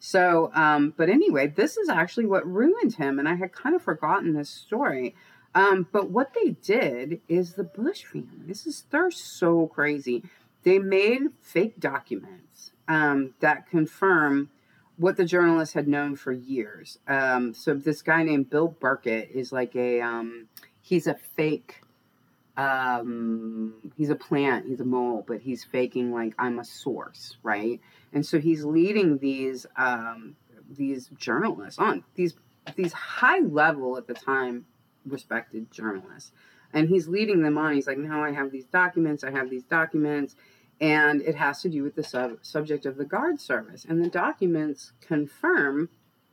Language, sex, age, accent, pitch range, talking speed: English, female, 30-49, American, 135-180 Hz, 160 wpm